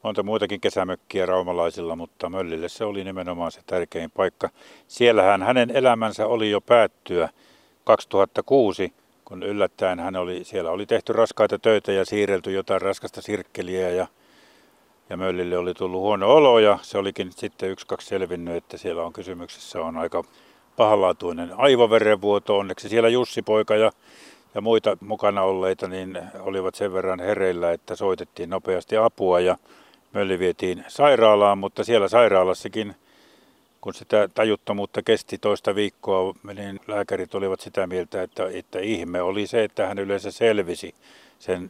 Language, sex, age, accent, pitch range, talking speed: Finnish, male, 50-69, native, 95-110 Hz, 145 wpm